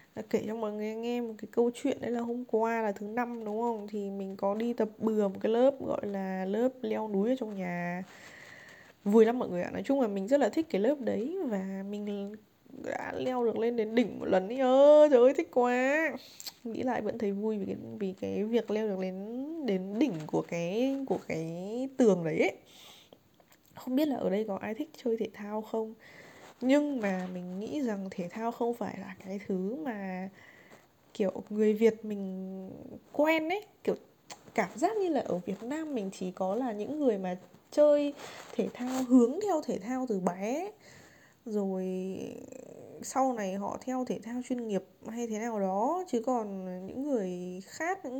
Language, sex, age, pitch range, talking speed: Vietnamese, female, 20-39, 195-255 Hz, 200 wpm